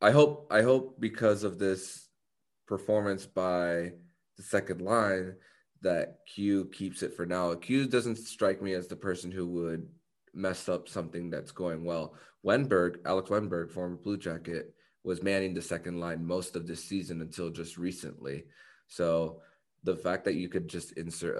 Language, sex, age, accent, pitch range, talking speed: English, male, 20-39, American, 85-95 Hz, 165 wpm